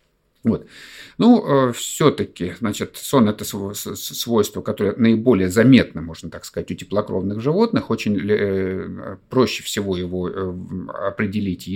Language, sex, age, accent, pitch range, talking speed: Russian, male, 50-69, native, 95-150 Hz, 105 wpm